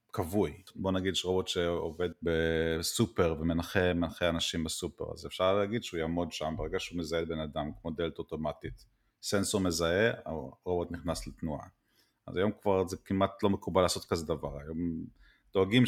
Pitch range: 85-110 Hz